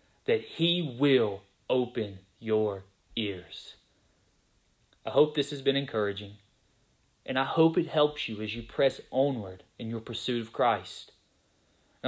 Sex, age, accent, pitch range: male, 30-49, American, 125-155 Hz